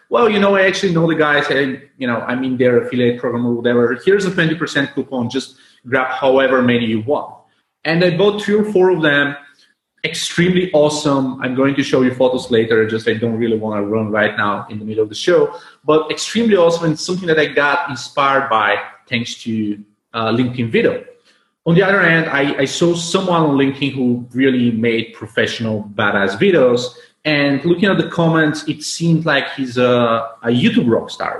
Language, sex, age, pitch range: English, male, 30-49, 120-160 Hz